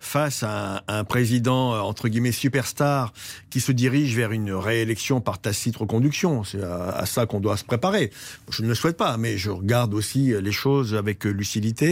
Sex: male